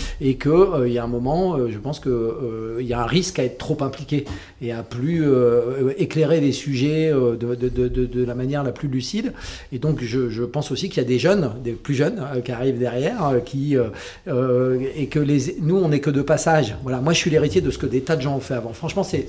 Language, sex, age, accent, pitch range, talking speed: French, male, 40-59, French, 125-160 Hz, 255 wpm